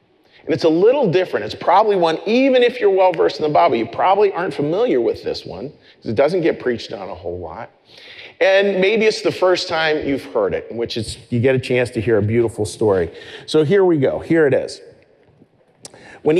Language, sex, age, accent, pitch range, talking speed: English, male, 40-59, American, 120-180 Hz, 215 wpm